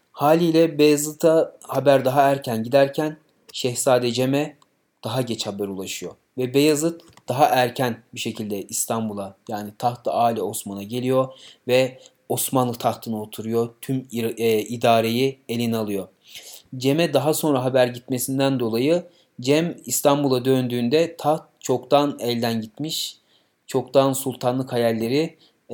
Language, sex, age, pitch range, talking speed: Turkish, male, 30-49, 120-150 Hz, 110 wpm